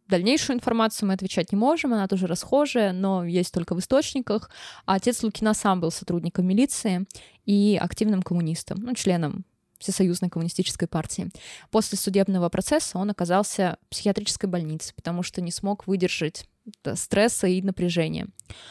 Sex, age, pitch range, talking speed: female, 20-39, 180-220 Hz, 140 wpm